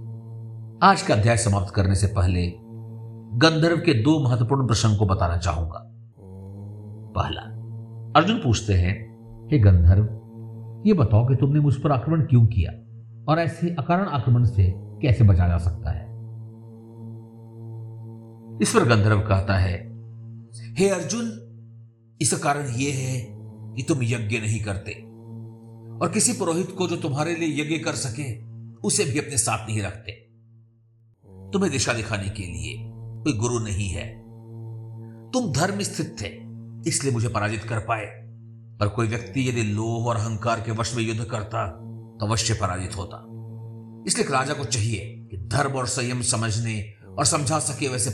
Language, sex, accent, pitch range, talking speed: Hindi, male, native, 105-115 Hz, 150 wpm